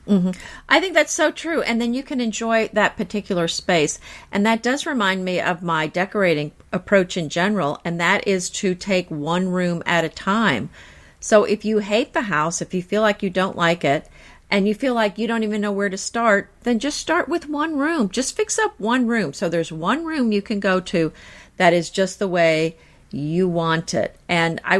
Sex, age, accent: female, 50-69, American